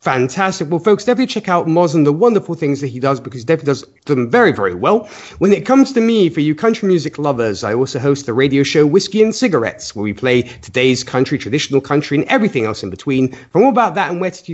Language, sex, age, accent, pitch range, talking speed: English, male, 40-59, British, 130-185 Hz, 250 wpm